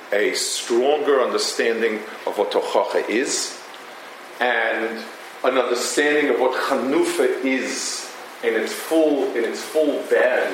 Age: 40-59